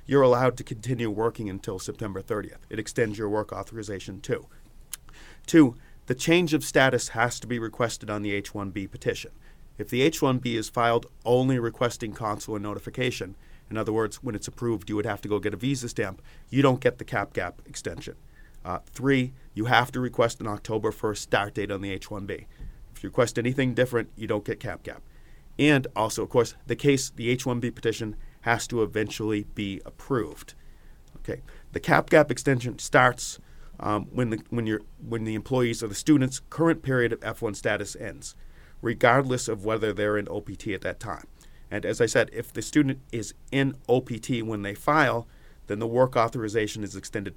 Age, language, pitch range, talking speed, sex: 40-59, English, 105-125 Hz, 185 wpm, male